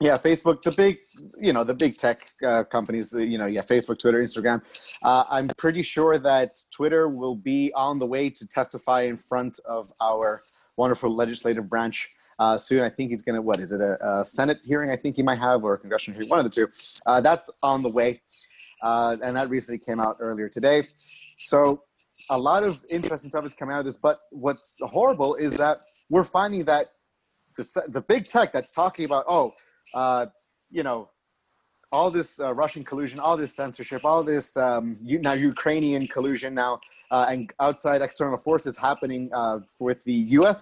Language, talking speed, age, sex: English, 200 wpm, 30-49, male